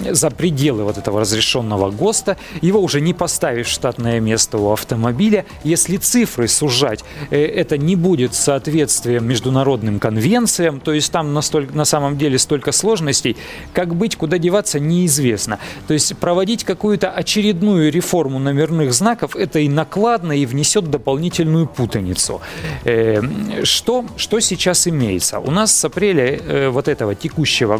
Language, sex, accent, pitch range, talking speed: Russian, male, native, 125-175 Hz, 140 wpm